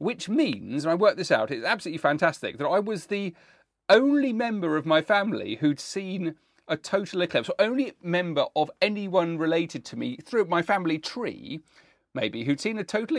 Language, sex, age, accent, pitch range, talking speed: English, male, 40-59, British, 125-200 Hz, 185 wpm